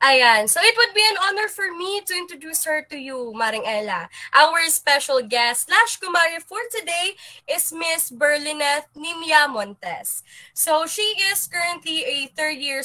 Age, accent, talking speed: 20-39, native, 155 wpm